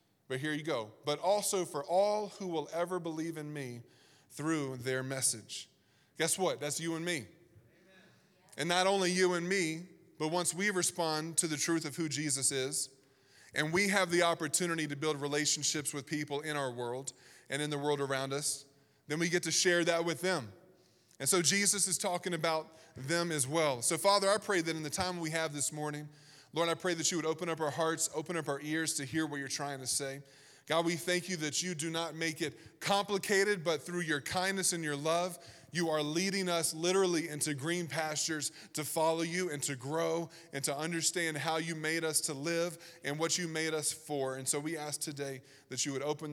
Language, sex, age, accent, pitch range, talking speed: English, male, 20-39, American, 140-170 Hz, 215 wpm